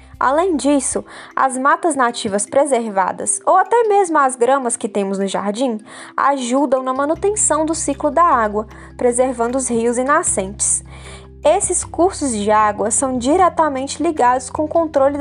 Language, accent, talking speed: Portuguese, Brazilian, 145 wpm